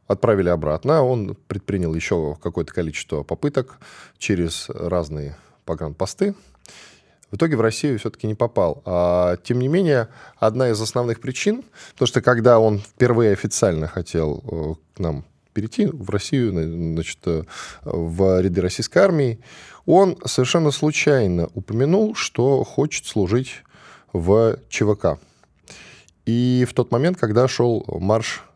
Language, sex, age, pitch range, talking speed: Russian, male, 10-29, 85-130 Hz, 125 wpm